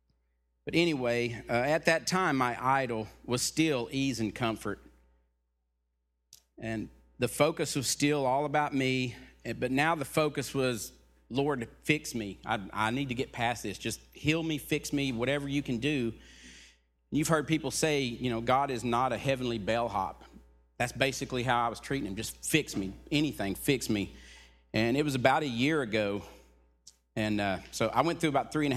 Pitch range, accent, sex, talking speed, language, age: 95-135 Hz, American, male, 180 wpm, English, 40-59